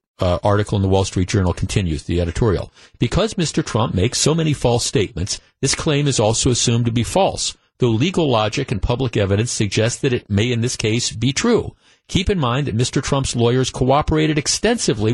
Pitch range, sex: 120-160 Hz, male